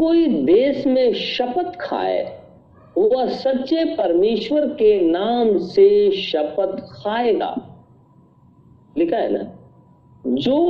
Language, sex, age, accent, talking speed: Hindi, male, 50-69, native, 95 wpm